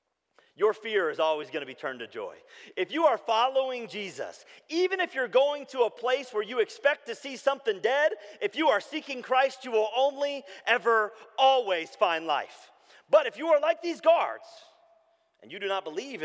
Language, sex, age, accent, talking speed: English, male, 40-59, American, 195 wpm